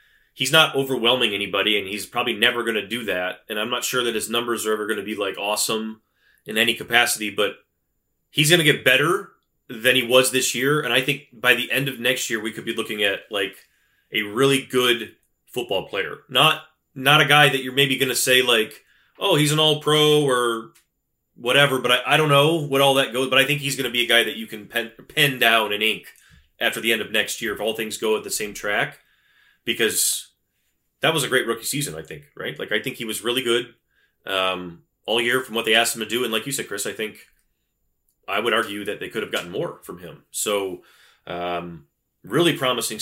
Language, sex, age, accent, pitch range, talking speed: English, male, 20-39, American, 110-140 Hz, 235 wpm